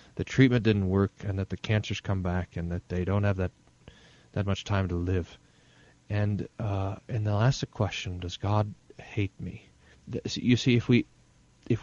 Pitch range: 95-120 Hz